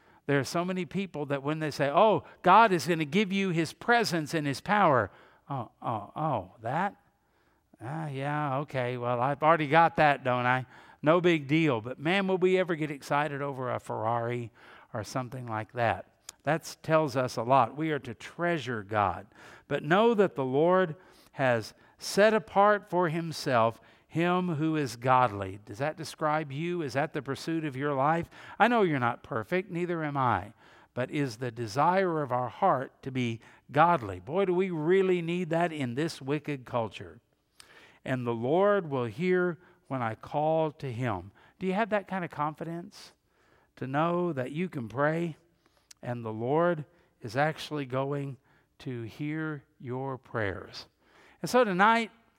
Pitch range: 130-175 Hz